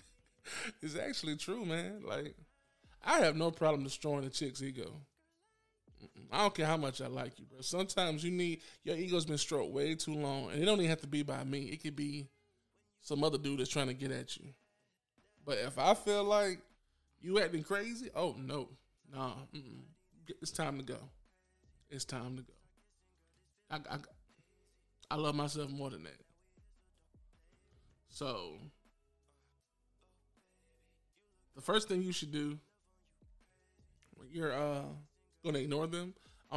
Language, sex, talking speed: English, male, 155 wpm